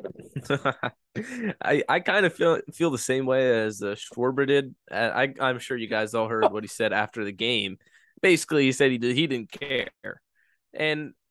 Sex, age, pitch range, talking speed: male, 20-39, 110-135 Hz, 190 wpm